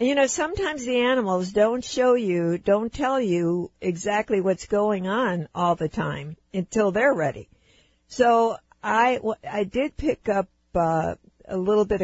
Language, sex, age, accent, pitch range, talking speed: English, female, 60-79, American, 175-210 Hz, 155 wpm